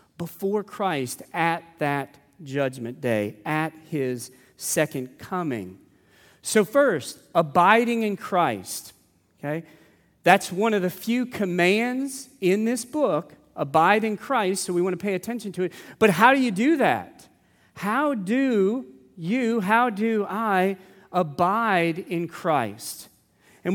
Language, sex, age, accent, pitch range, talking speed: English, male, 40-59, American, 150-210 Hz, 130 wpm